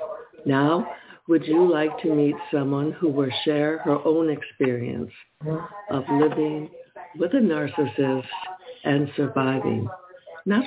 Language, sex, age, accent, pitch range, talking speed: English, female, 60-79, American, 140-180 Hz, 120 wpm